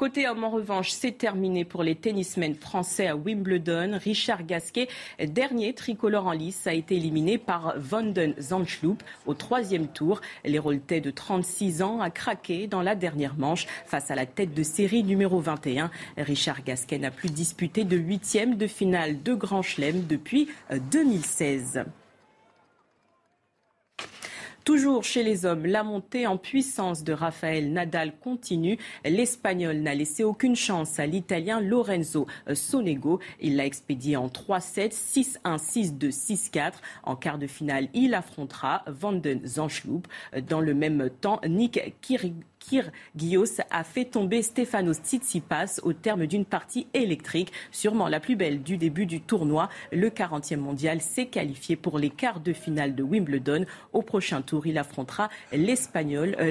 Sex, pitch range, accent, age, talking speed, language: female, 155-215 Hz, French, 40-59, 145 wpm, French